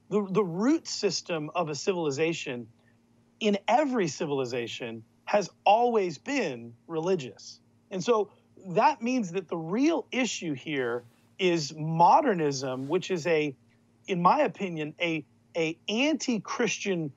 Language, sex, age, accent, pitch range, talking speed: English, male, 40-59, American, 130-205 Hz, 120 wpm